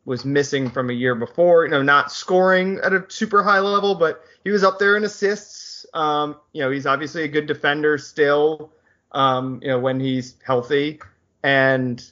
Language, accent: English, American